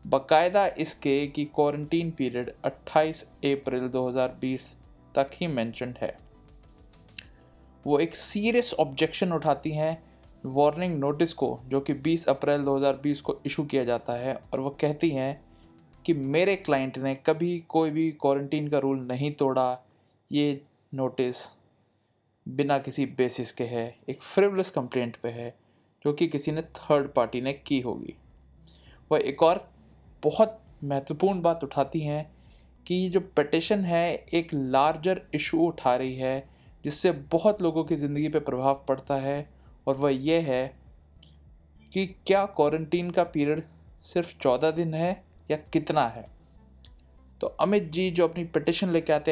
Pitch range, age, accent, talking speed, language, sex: 130-165 Hz, 20-39, native, 145 wpm, Hindi, male